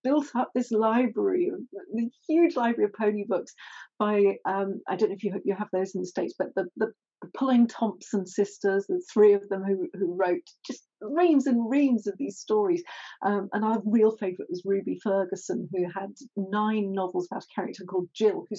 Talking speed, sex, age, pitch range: 195 wpm, female, 40-59, 200-280 Hz